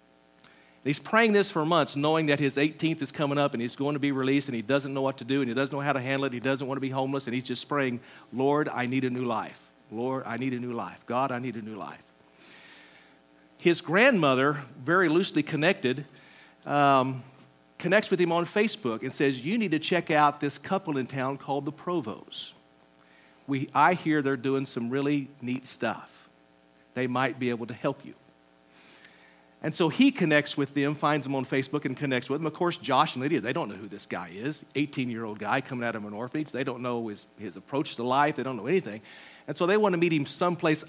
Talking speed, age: 230 wpm, 50-69